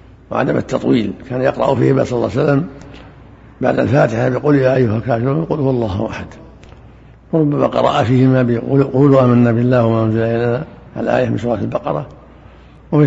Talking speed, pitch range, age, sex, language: 150 wpm, 110-135 Hz, 60-79, male, Arabic